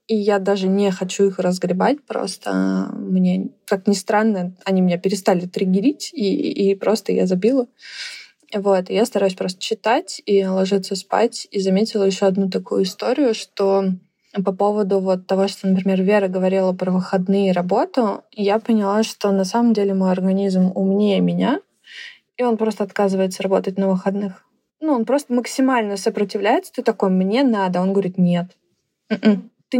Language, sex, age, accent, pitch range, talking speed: Russian, female, 20-39, native, 195-225 Hz, 160 wpm